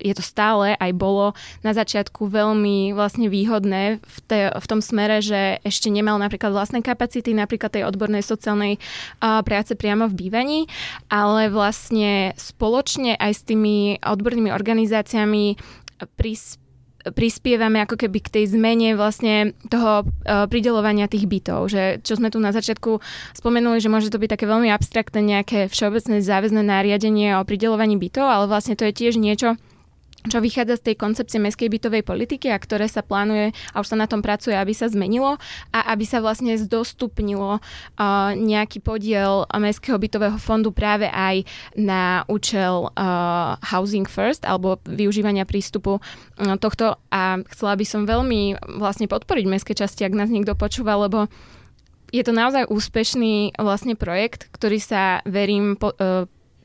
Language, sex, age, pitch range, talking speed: Slovak, female, 20-39, 200-225 Hz, 155 wpm